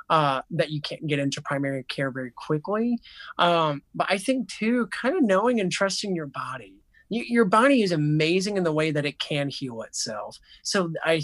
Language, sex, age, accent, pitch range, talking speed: English, male, 20-39, American, 145-180 Hz, 190 wpm